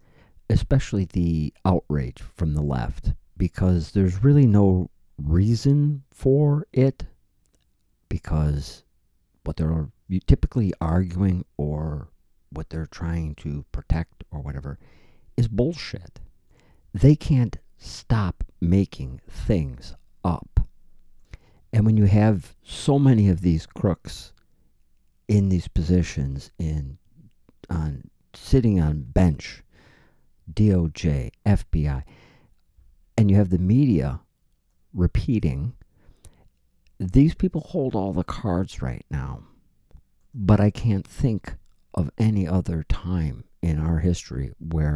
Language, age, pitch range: English, 50-69, 75-105 Hz